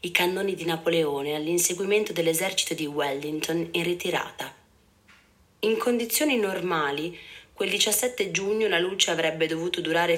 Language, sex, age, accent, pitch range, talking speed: Italian, female, 30-49, native, 155-185 Hz, 125 wpm